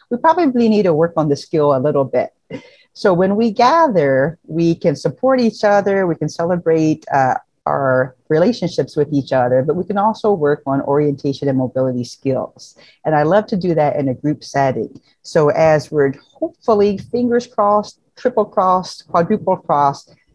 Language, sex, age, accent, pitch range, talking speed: English, female, 40-59, American, 145-195 Hz, 175 wpm